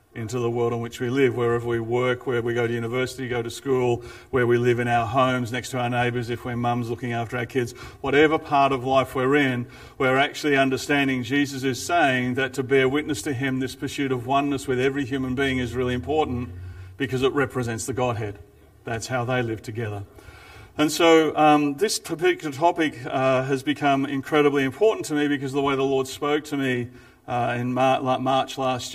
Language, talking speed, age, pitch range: English, 210 wpm, 40-59, 125-140 Hz